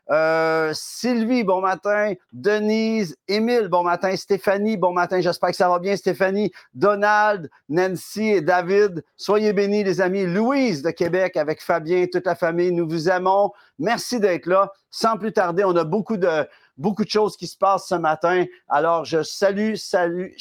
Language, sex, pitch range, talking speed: French, male, 150-195 Hz, 170 wpm